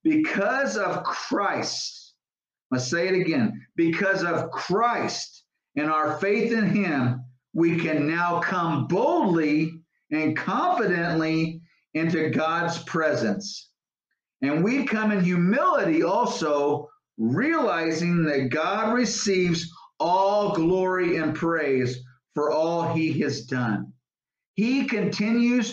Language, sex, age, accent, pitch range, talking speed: English, male, 50-69, American, 160-210 Hz, 110 wpm